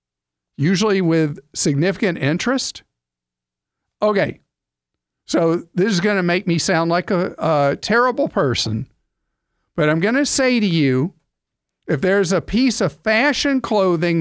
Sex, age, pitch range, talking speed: male, 50-69, 120-195 Hz, 135 wpm